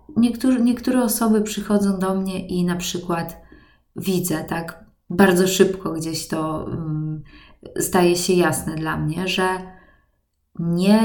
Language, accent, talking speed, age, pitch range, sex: Polish, native, 115 wpm, 20-39, 165-210 Hz, female